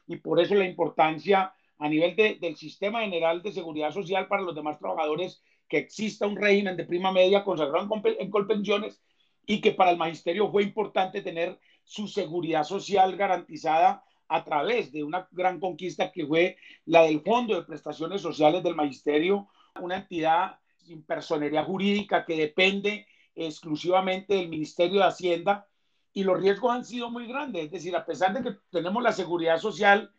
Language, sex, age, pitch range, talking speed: Spanish, male, 40-59, 165-200 Hz, 170 wpm